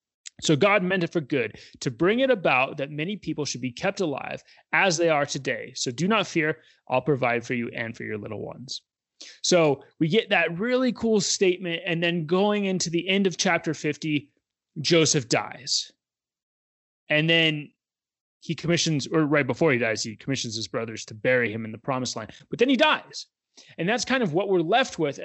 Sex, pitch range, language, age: male, 135-190 Hz, English, 30-49